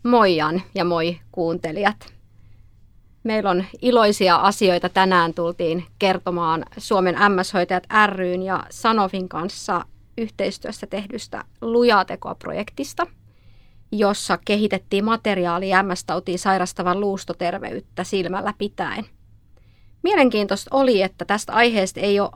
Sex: female